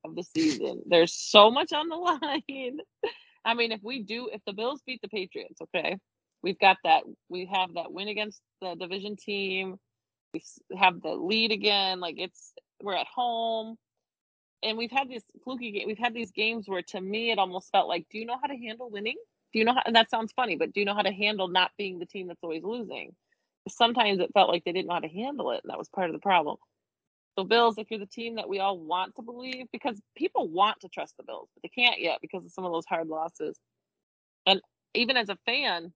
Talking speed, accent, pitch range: 235 wpm, American, 190-255 Hz